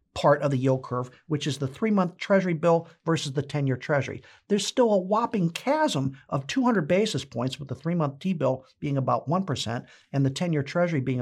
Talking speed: 195 wpm